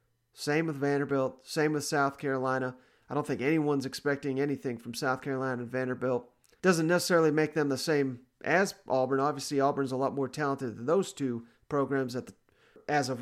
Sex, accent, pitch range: male, American, 130-160 Hz